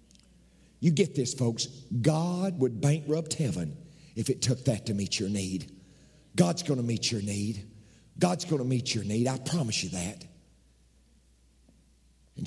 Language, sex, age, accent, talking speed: English, male, 50-69, American, 160 wpm